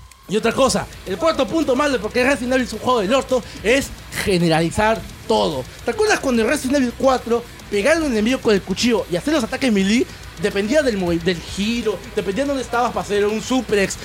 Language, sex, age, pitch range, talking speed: Spanish, male, 30-49, 205-280 Hz, 215 wpm